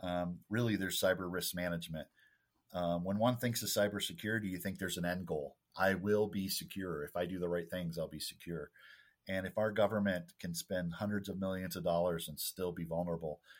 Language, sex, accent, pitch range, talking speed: English, male, American, 85-100 Hz, 205 wpm